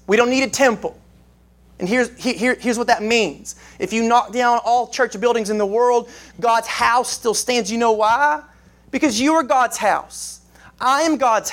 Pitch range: 210-255 Hz